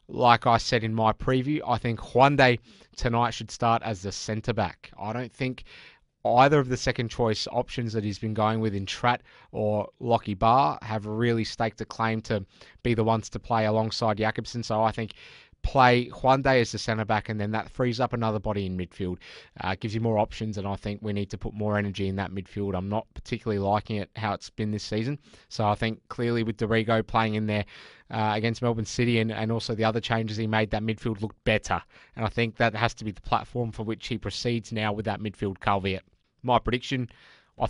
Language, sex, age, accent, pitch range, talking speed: English, male, 20-39, Australian, 105-120 Hz, 220 wpm